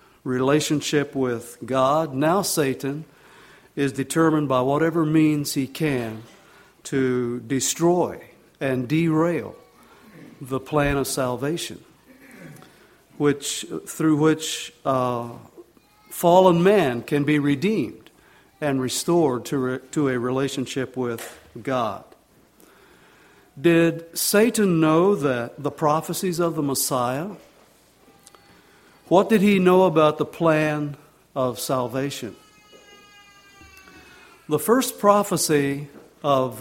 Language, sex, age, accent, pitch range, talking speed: English, male, 60-79, American, 130-160 Hz, 100 wpm